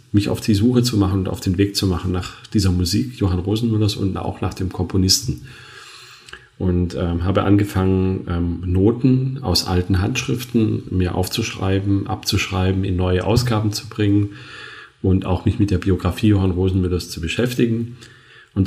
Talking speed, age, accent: 160 wpm, 40-59, German